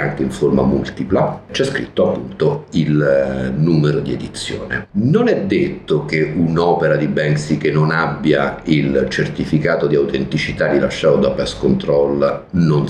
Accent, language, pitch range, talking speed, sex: native, Italian, 70-100 Hz, 140 wpm, male